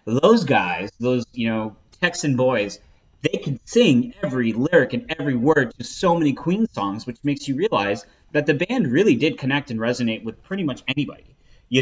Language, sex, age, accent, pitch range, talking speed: English, male, 30-49, American, 110-145 Hz, 190 wpm